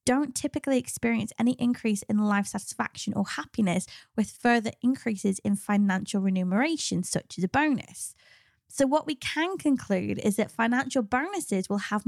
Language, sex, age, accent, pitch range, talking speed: English, female, 20-39, British, 195-250 Hz, 155 wpm